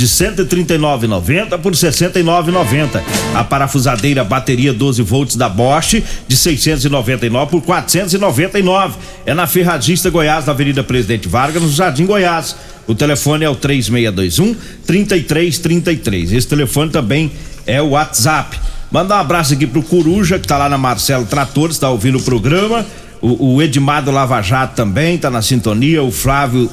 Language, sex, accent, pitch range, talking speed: Portuguese, male, Brazilian, 130-170 Hz, 190 wpm